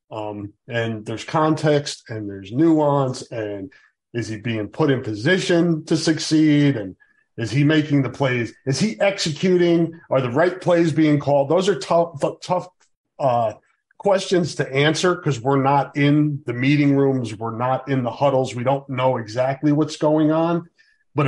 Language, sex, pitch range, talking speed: English, male, 120-160 Hz, 165 wpm